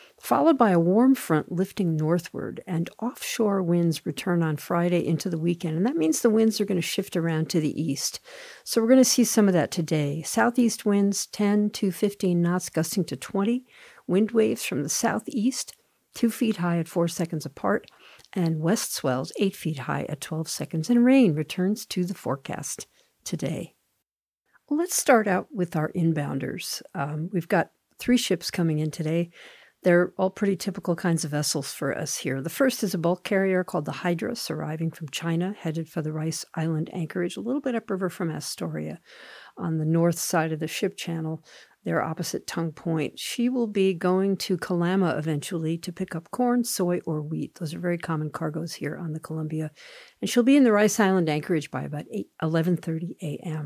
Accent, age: American, 50-69